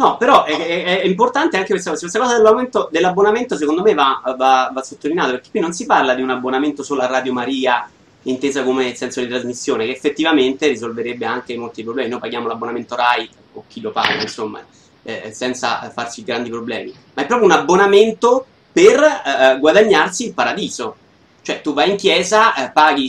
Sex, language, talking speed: male, Italian, 185 wpm